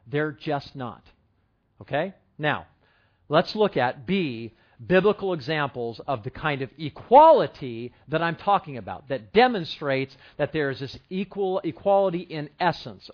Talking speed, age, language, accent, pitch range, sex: 135 wpm, 40-59, English, American, 145-200 Hz, male